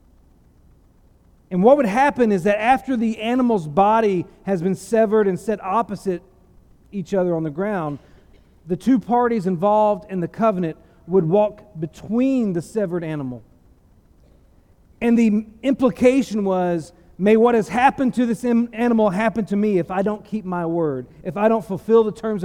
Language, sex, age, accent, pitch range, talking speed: English, male, 40-59, American, 150-225 Hz, 160 wpm